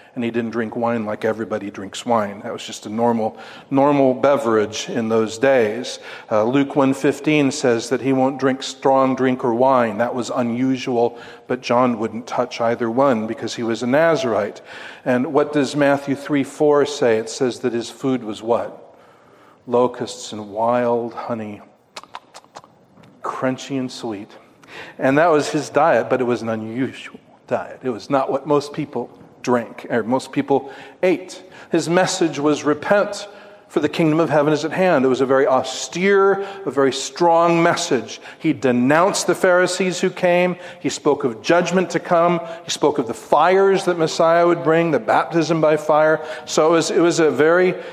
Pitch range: 125-165 Hz